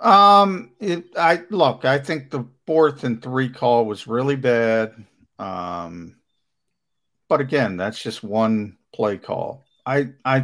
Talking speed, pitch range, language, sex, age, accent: 140 wpm, 110-135 Hz, English, male, 50-69, American